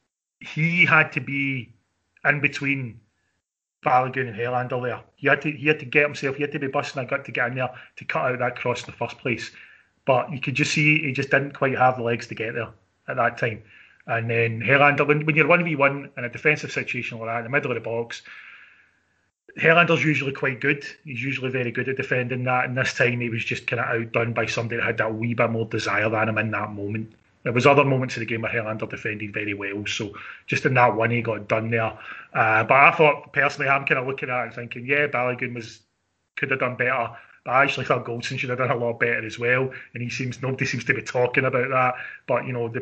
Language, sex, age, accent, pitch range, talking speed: English, male, 30-49, British, 115-140 Hz, 250 wpm